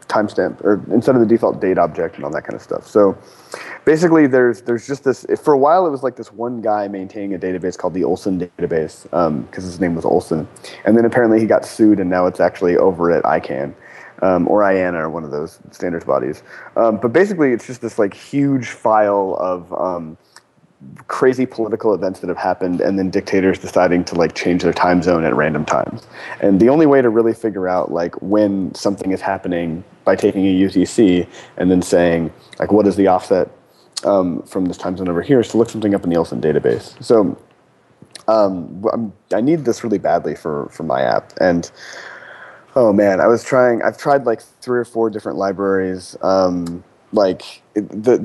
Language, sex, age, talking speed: English, male, 30-49, 205 wpm